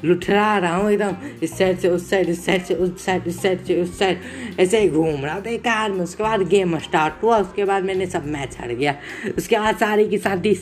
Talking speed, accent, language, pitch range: 245 wpm, native, Hindi, 155-195 Hz